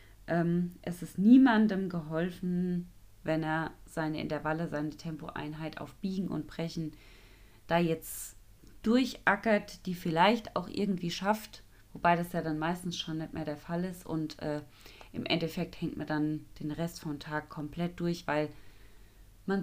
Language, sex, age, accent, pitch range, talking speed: German, female, 20-39, German, 140-175 Hz, 145 wpm